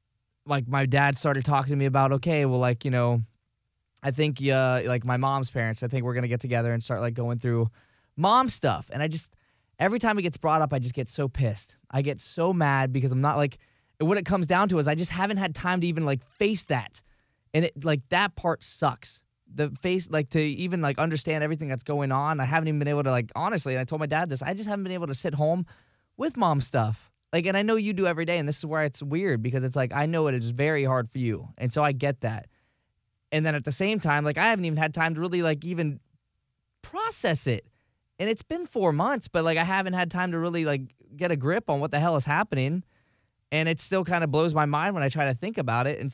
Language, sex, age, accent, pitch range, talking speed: English, male, 10-29, American, 125-165 Hz, 260 wpm